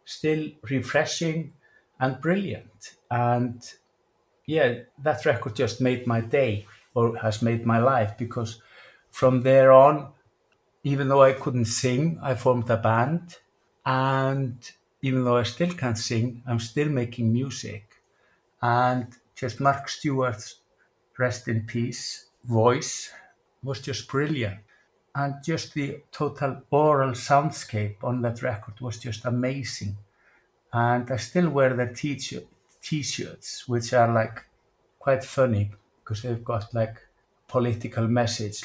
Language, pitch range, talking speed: English, 115-140 Hz, 125 wpm